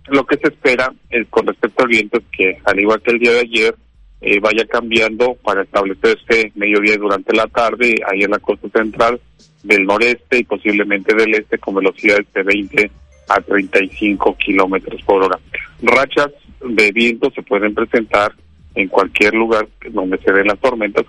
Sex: male